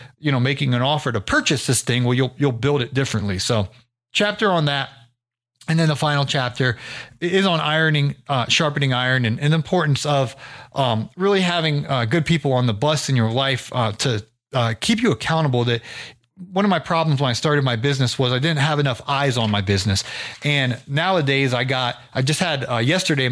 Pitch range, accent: 125-155 Hz, American